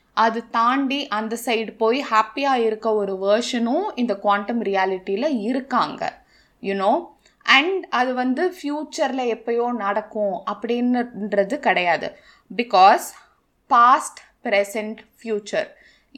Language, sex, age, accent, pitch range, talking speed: Tamil, female, 20-39, native, 210-270 Hz, 95 wpm